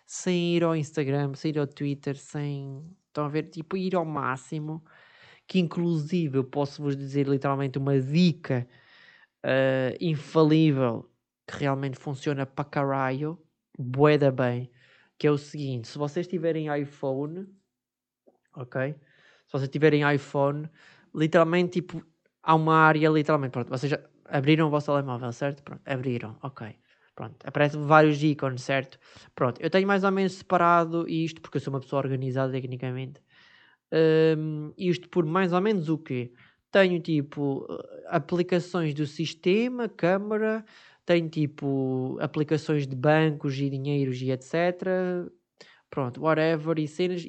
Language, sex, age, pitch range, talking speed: Portuguese, male, 20-39, 140-170 Hz, 140 wpm